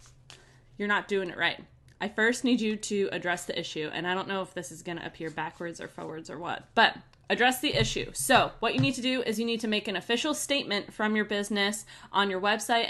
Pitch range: 180-220 Hz